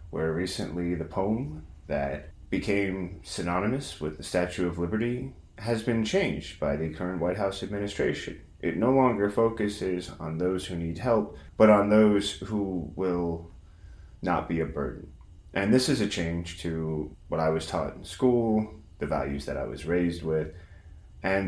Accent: American